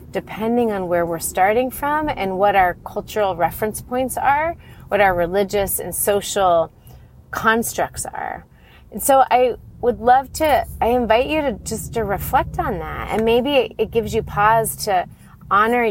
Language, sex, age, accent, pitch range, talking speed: English, female, 30-49, American, 170-220 Hz, 160 wpm